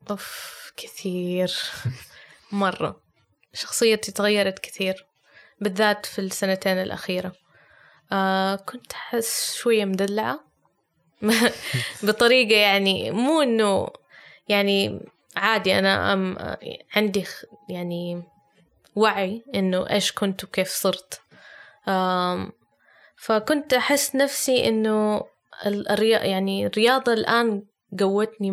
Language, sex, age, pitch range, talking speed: Arabic, female, 20-39, 190-215 Hz, 75 wpm